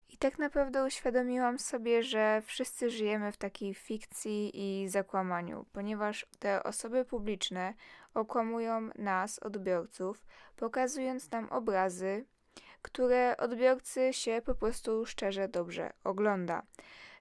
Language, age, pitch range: Polish, 10-29, 195-240 Hz